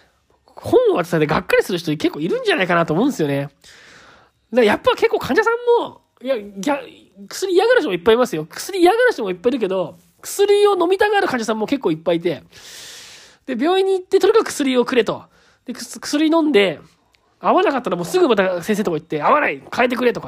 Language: Japanese